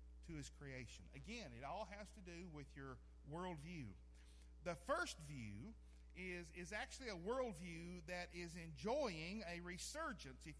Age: 50-69